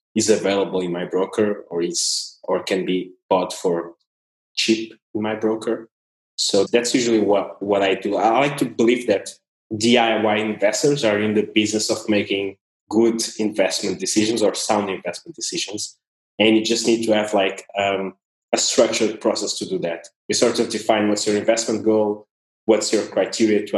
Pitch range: 100-115 Hz